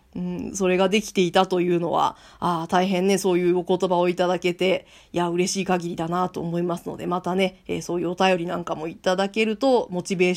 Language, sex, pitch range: Japanese, female, 175-235 Hz